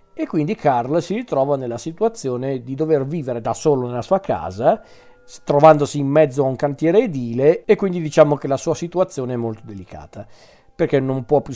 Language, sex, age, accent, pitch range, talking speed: Italian, male, 40-59, native, 125-165 Hz, 185 wpm